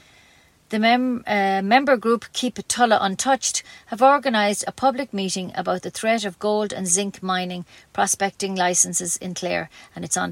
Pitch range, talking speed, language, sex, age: 185-225 Hz, 170 wpm, English, female, 40-59